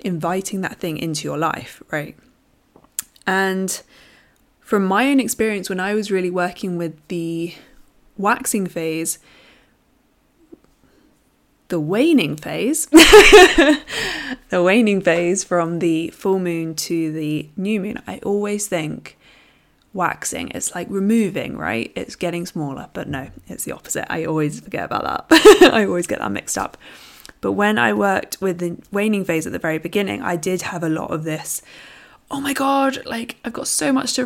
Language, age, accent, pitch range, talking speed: English, 20-39, British, 170-220 Hz, 160 wpm